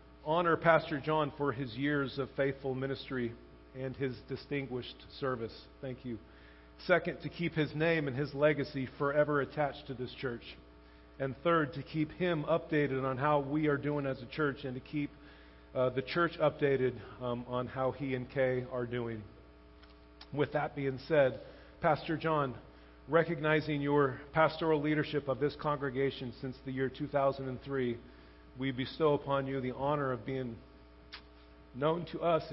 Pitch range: 125-150 Hz